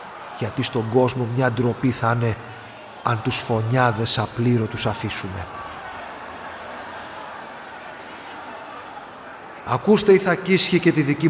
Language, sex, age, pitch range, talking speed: Greek, male, 40-59, 120-155 Hz, 95 wpm